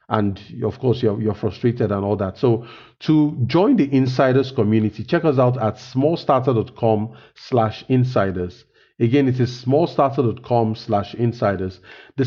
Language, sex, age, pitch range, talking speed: English, male, 40-59, 110-135 Hz, 140 wpm